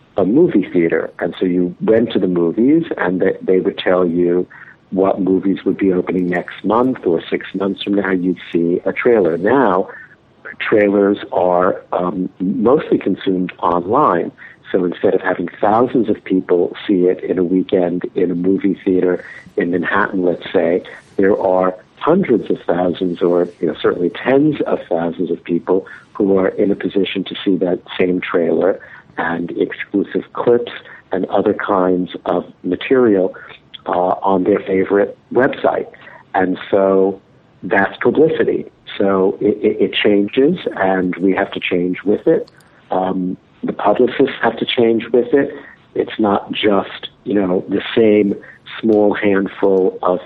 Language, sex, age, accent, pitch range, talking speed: English, male, 60-79, American, 90-100 Hz, 155 wpm